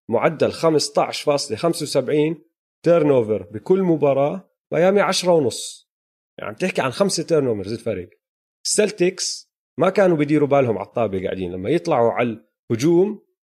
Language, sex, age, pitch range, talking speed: Arabic, male, 30-49, 135-180 Hz, 120 wpm